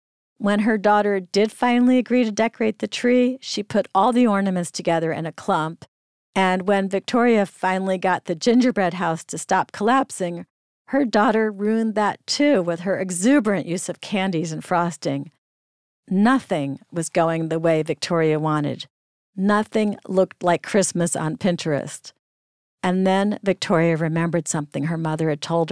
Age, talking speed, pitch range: 50-69, 150 wpm, 165-210 Hz